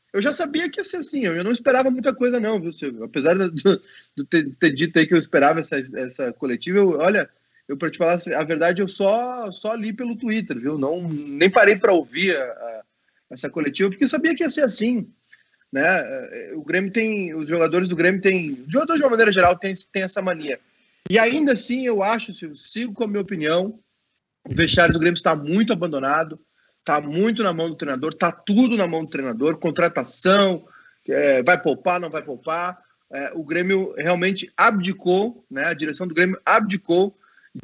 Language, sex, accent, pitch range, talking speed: Portuguese, male, Brazilian, 165-220 Hz, 200 wpm